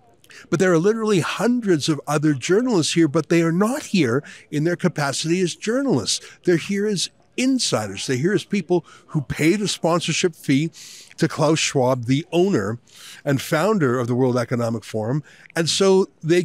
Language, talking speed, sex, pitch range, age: English, 170 wpm, male, 145-185 Hz, 50-69